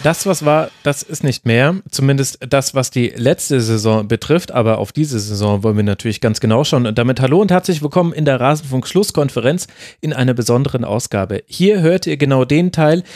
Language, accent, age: German, German, 30-49